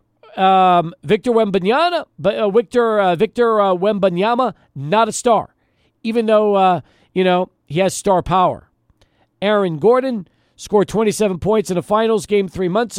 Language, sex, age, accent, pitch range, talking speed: English, male, 50-69, American, 165-215 Hz, 150 wpm